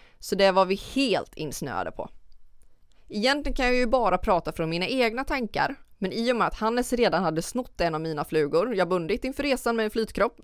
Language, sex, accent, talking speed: Swedish, female, native, 220 wpm